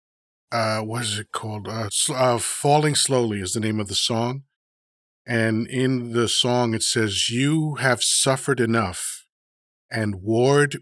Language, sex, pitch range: English, male, 110-130 Hz